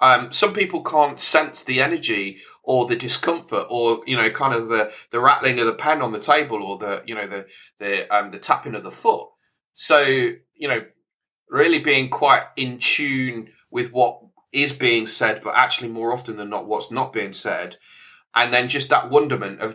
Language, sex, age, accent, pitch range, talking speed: English, male, 30-49, British, 110-145 Hz, 200 wpm